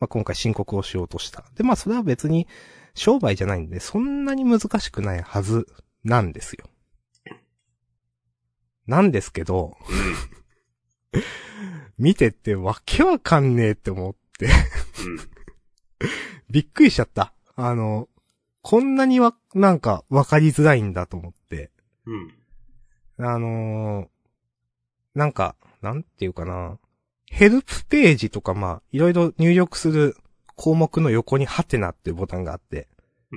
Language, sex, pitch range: Japanese, male, 100-155 Hz